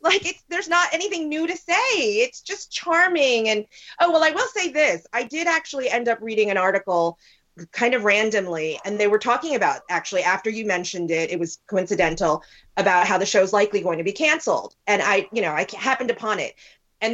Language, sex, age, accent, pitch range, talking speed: English, female, 30-49, American, 205-300 Hz, 210 wpm